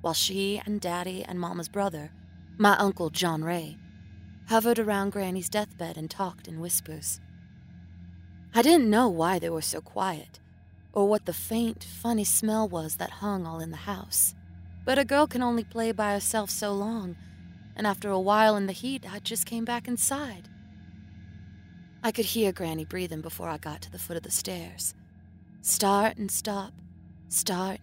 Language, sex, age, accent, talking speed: English, female, 20-39, American, 175 wpm